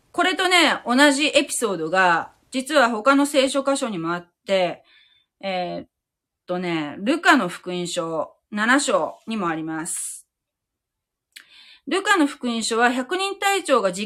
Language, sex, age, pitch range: Japanese, female, 30-49, 180-275 Hz